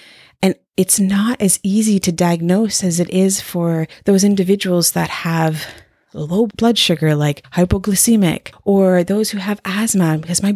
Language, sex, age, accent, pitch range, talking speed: English, female, 30-49, American, 160-205 Hz, 155 wpm